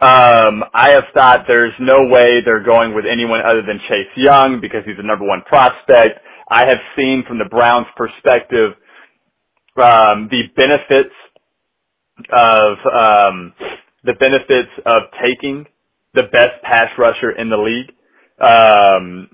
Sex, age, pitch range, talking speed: male, 30-49, 115-140 Hz, 140 wpm